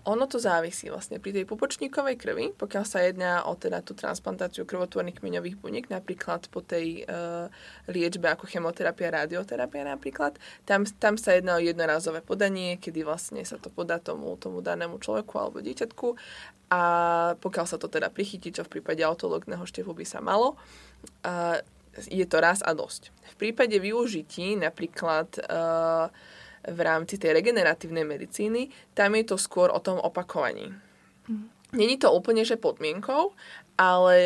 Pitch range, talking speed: 170-200 Hz, 155 wpm